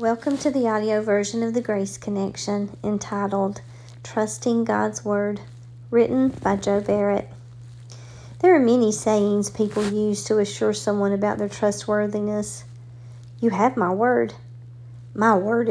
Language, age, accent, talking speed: English, 50-69, American, 135 wpm